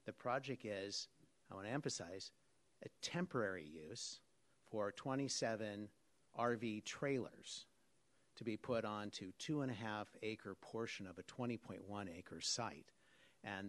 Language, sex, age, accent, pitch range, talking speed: English, male, 50-69, American, 100-125 Hz, 125 wpm